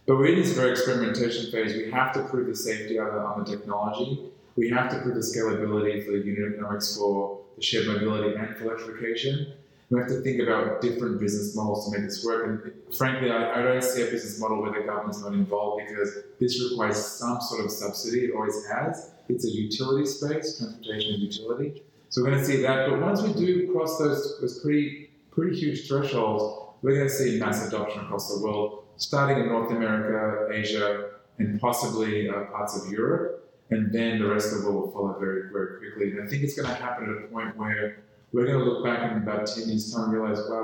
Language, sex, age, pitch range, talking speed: Greek, male, 20-39, 105-135 Hz, 220 wpm